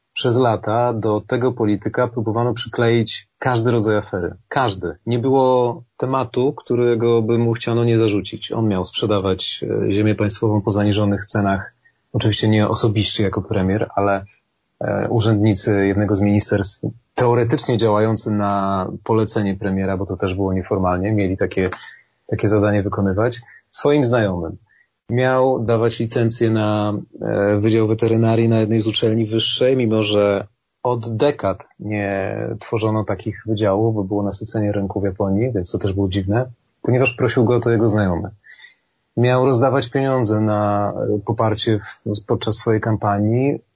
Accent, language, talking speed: native, Polish, 140 wpm